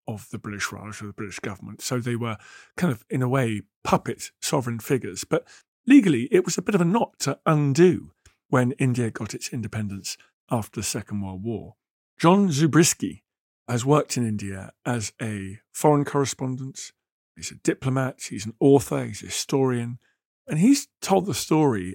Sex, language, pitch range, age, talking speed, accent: male, English, 115-155 Hz, 50-69, 175 wpm, British